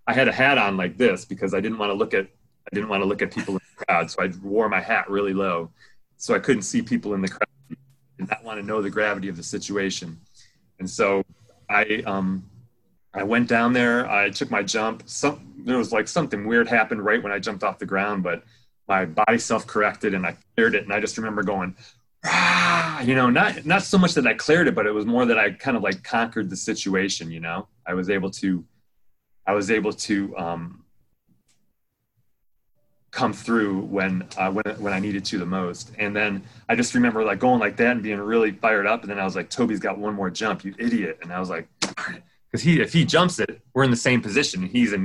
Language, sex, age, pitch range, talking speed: English, male, 30-49, 95-120 Hz, 235 wpm